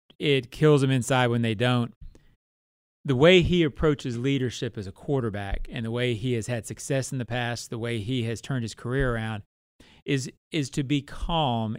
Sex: male